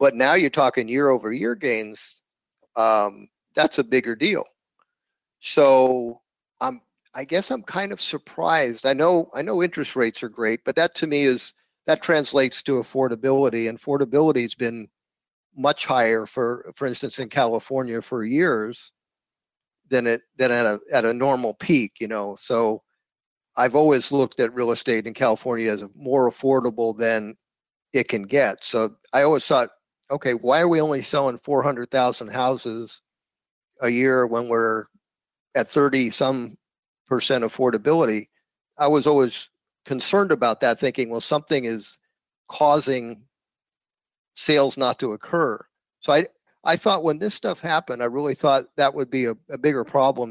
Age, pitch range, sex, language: 50-69, 115-145 Hz, male, English